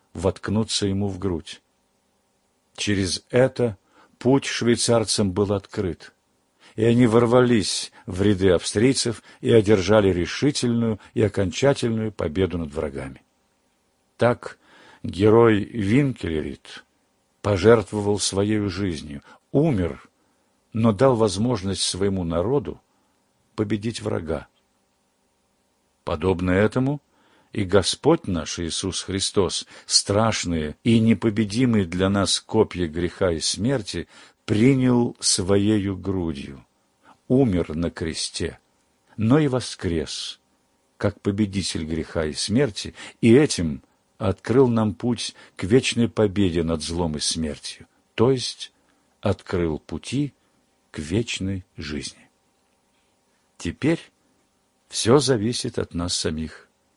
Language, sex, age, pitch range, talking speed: Russian, male, 50-69, 85-115 Hz, 100 wpm